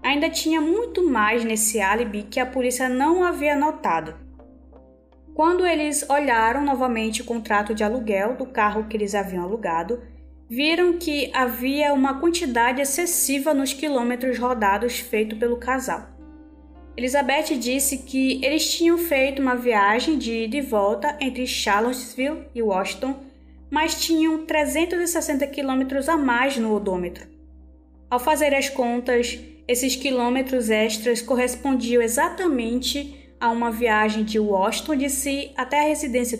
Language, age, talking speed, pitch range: Portuguese, 20-39, 130 wpm, 220-280 Hz